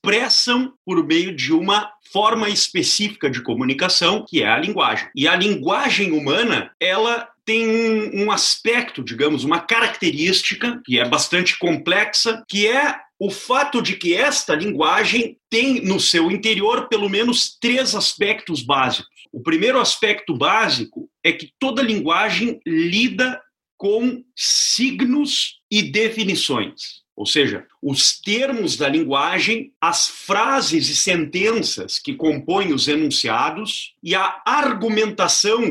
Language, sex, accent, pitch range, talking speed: Portuguese, male, Brazilian, 200-260 Hz, 130 wpm